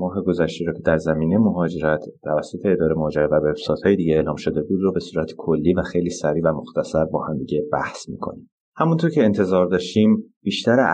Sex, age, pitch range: male, 30-49, 80-95 Hz